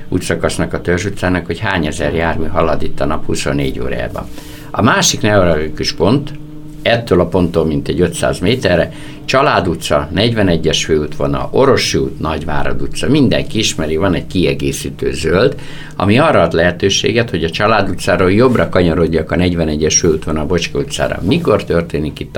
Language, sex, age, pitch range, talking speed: Hungarian, male, 60-79, 80-105 Hz, 155 wpm